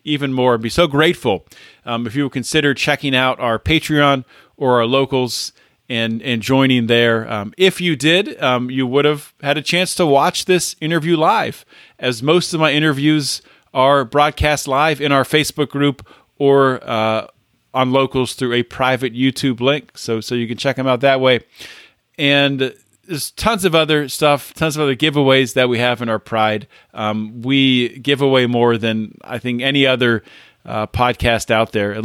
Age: 40-59